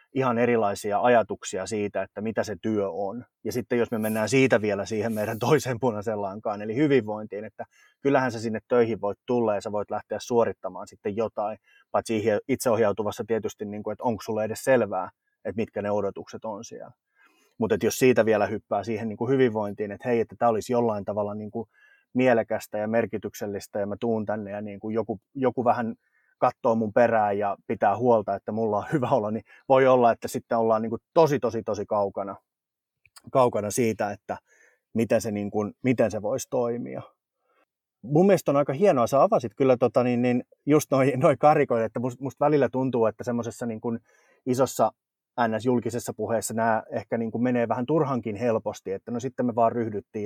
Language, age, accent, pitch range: Finnish, 30-49, native, 105-125 Hz